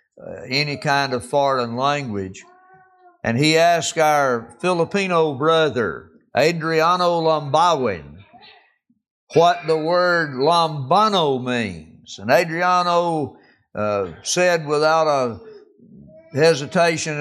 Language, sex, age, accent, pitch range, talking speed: English, male, 60-79, American, 130-175 Hz, 90 wpm